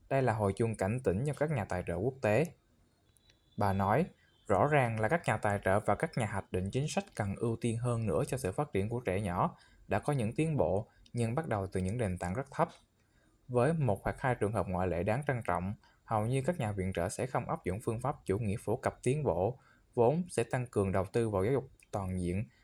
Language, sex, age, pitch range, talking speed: Vietnamese, male, 20-39, 100-125 Hz, 250 wpm